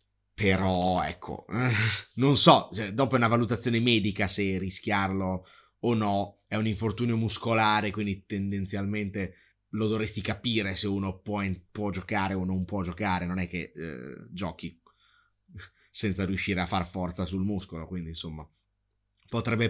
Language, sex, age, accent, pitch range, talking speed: Italian, male, 30-49, native, 95-115 Hz, 140 wpm